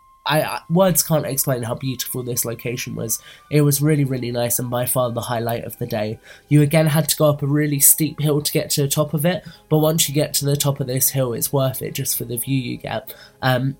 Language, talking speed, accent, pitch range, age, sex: English, 250 wpm, British, 130-145 Hz, 20-39, male